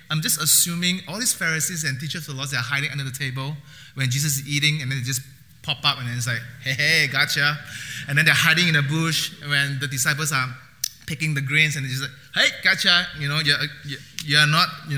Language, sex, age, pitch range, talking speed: English, male, 20-39, 125-155 Hz, 240 wpm